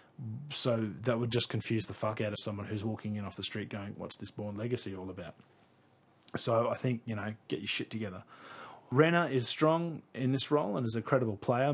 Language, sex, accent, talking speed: English, male, Australian, 225 wpm